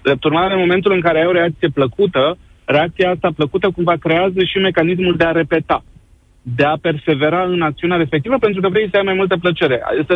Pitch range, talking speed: 135-165 Hz, 205 wpm